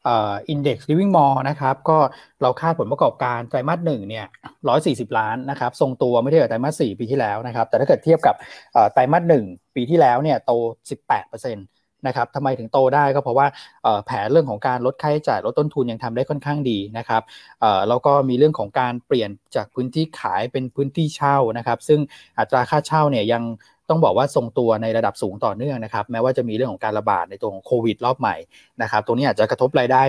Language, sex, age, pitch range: Thai, male, 20-39, 115-140 Hz